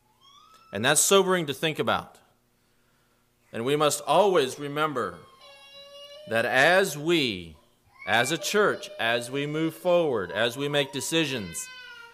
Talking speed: 125 wpm